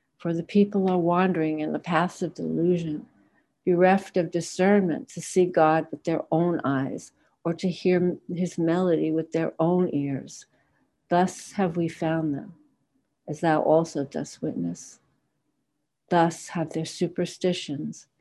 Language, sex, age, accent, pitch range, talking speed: English, female, 60-79, American, 155-175 Hz, 140 wpm